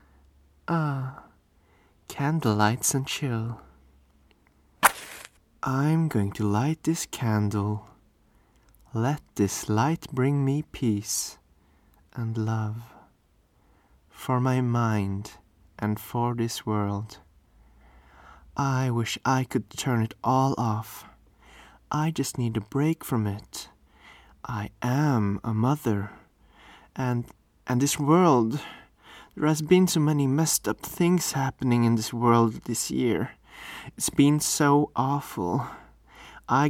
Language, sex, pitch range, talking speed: English, male, 105-135 Hz, 105 wpm